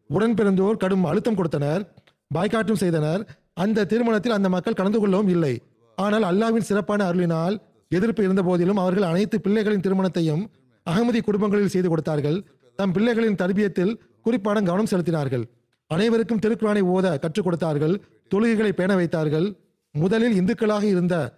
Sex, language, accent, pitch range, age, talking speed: male, Tamil, native, 170-210 Hz, 40-59, 125 wpm